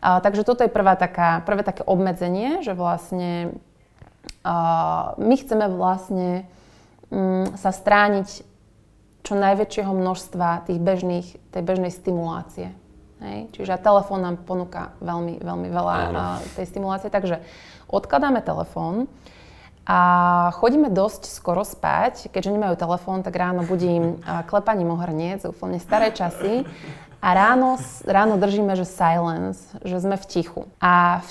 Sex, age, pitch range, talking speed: female, 20-39, 175-205 Hz, 135 wpm